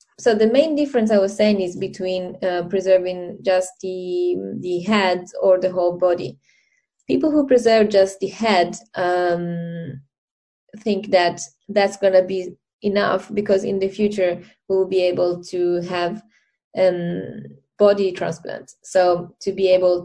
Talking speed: 145 wpm